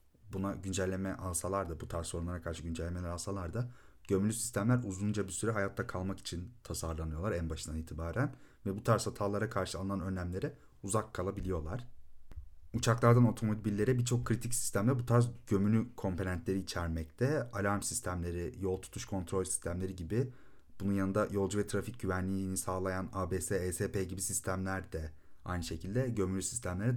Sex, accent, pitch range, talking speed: male, native, 85-105 Hz, 145 wpm